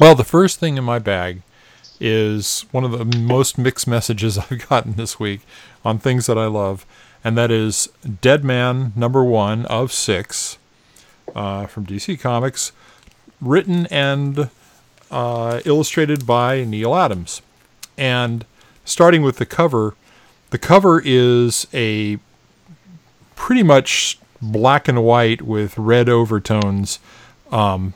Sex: male